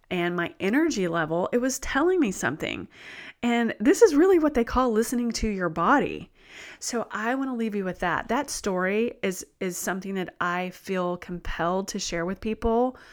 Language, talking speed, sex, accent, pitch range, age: English, 185 wpm, female, American, 175-220 Hz, 30-49